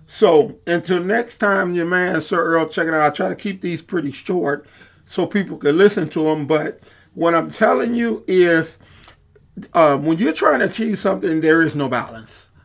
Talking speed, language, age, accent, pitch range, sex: 195 wpm, English, 40-59, American, 155-205 Hz, male